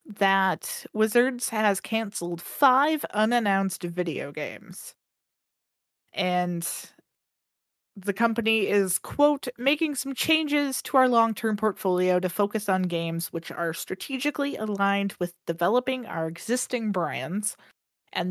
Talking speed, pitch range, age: 110 wpm, 180-255 Hz, 20-39